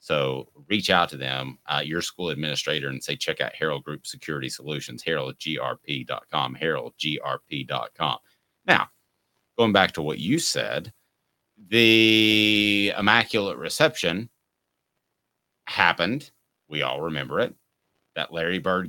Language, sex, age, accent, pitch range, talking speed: English, male, 30-49, American, 85-110 Hz, 120 wpm